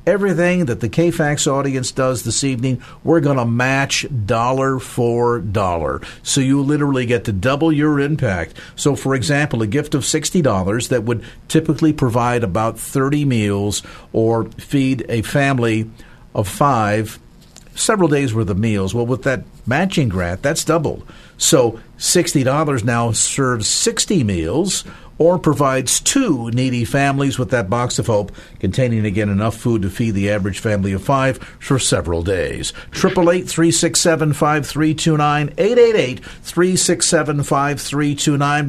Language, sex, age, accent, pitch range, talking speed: English, male, 50-69, American, 115-155 Hz, 135 wpm